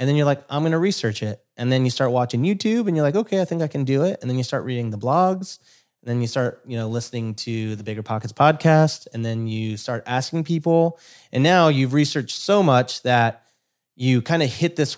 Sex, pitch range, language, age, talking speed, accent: male, 115-145 Hz, English, 30-49, 250 wpm, American